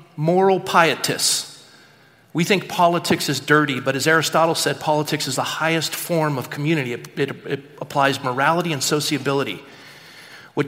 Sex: male